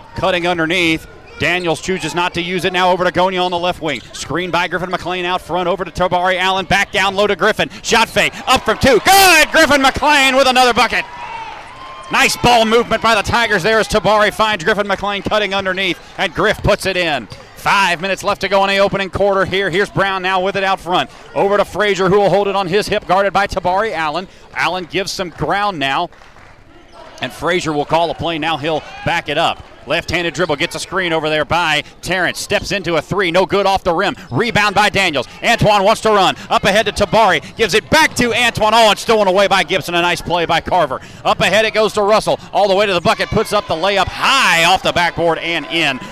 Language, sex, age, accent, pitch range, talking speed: English, male, 30-49, American, 170-210 Hz, 230 wpm